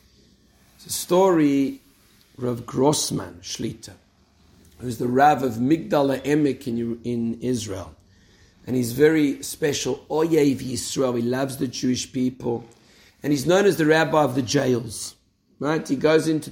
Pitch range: 125-165 Hz